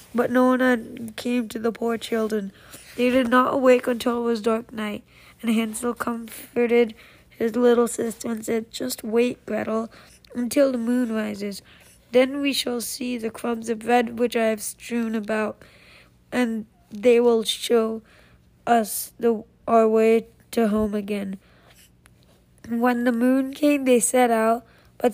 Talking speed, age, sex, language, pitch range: 155 wpm, 20-39, female, English, 220-240 Hz